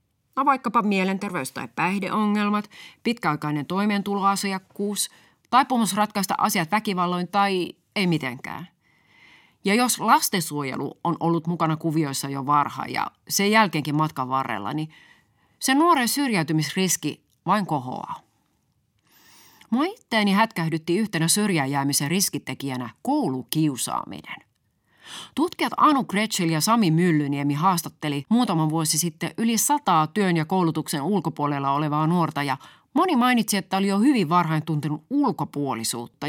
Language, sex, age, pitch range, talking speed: Finnish, female, 30-49, 150-205 Hz, 115 wpm